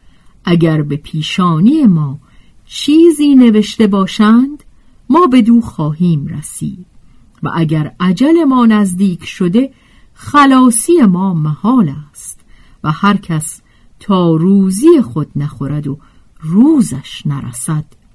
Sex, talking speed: female, 105 wpm